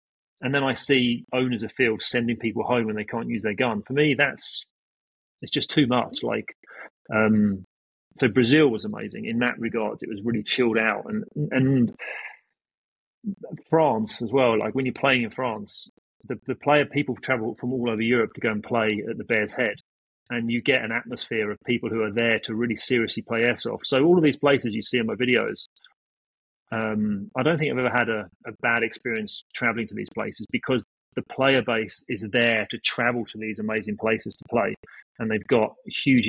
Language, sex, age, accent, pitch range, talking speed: English, male, 30-49, British, 110-130 Hz, 205 wpm